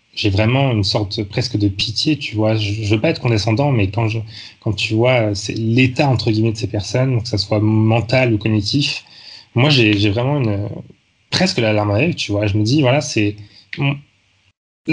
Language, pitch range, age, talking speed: French, 105-125 Hz, 20-39, 210 wpm